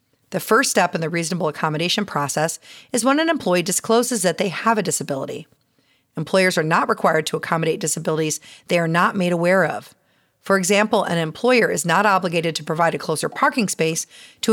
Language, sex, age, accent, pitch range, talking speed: English, female, 40-59, American, 160-205 Hz, 185 wpm